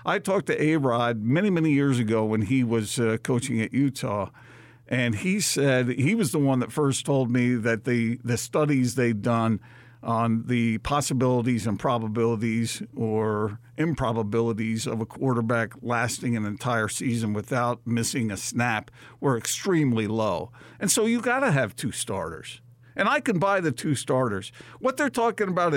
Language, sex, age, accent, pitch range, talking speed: English, male, 50-69, American, 115-145 Hz, 170 wpm